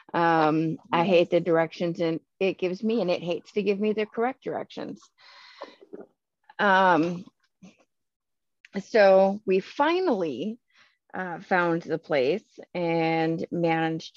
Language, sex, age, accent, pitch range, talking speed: English, female, 30-49, American, 165-210 Hz, 115 wpm